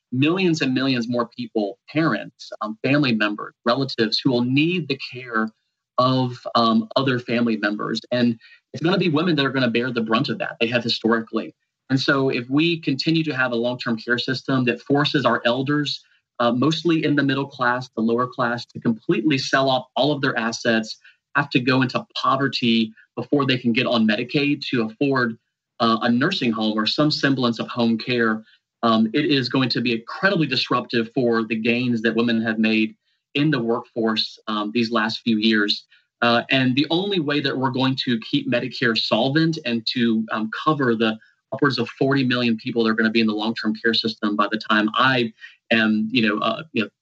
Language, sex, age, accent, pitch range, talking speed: English, male, 30-49, American, 115-135 Hz, 205 wpm